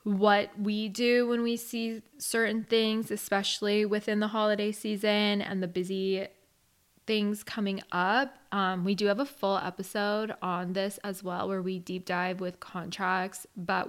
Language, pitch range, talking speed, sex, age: English, 190-220 Hz, 160 wpm, female, 10-29